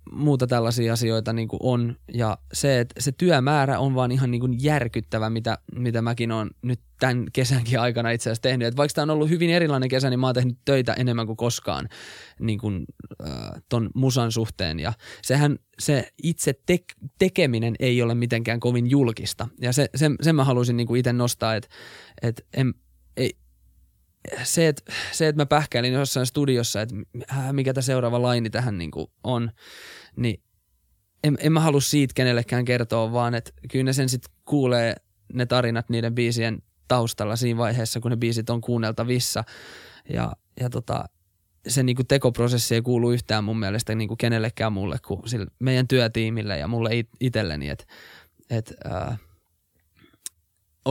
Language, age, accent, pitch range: Finnish, 20-39, native, 110-130 Hz